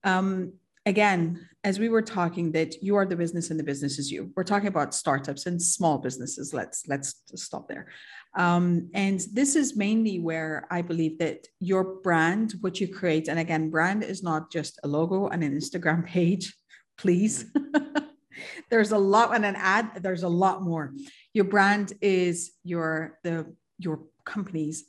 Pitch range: 160-200 Hz